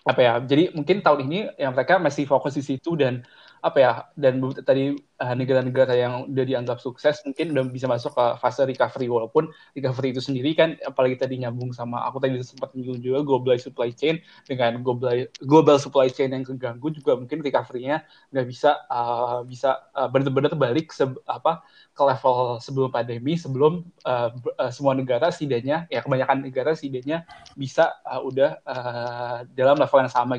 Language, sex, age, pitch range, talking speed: Indonesian, male, 20-39, 125-145 Hz, 175 wpm